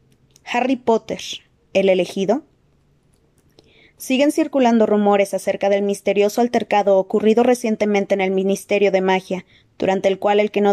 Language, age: Spanish, 20-39